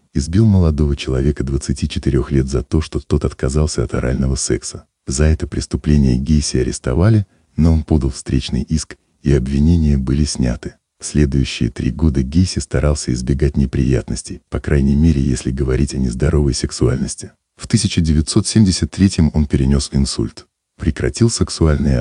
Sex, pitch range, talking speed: male, 65-80 Hz, 135 wpm